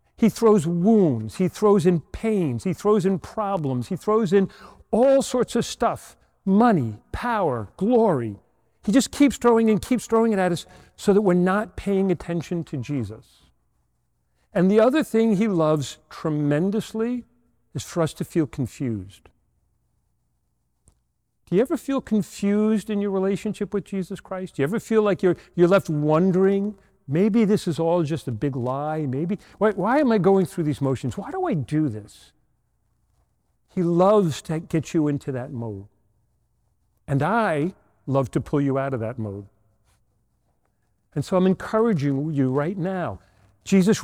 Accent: American